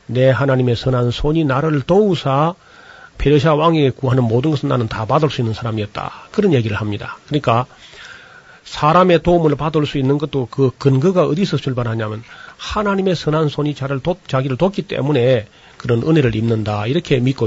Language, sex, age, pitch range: Korean, male, 40-59, 125-155 Hz